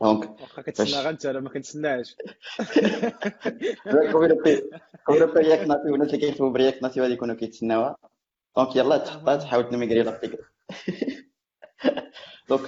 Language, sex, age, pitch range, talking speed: Arabic, male, 20-39, 100-125 Hz, 85 wpm